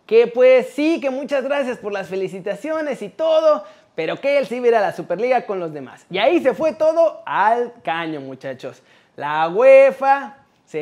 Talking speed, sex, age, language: 175 wpm, male, 30-49, Spanish